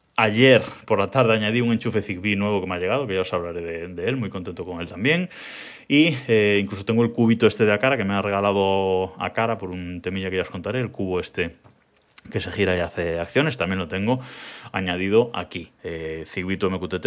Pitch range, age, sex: 90-115 Hz, 20-39, male